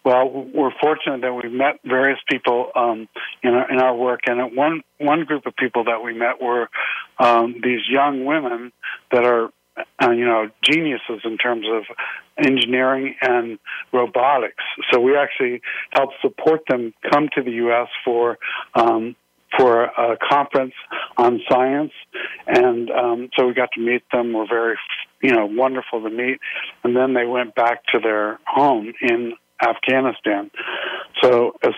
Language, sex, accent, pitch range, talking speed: English, male, American, 120-130 Hz, 160 wpm